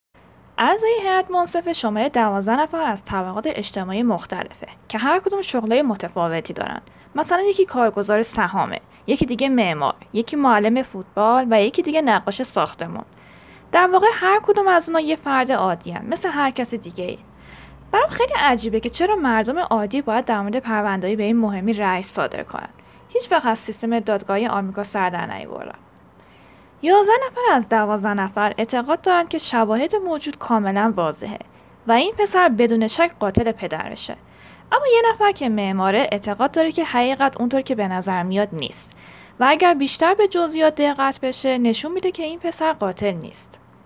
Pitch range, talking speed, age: 210-320 Hz, 160 wpm, 10-29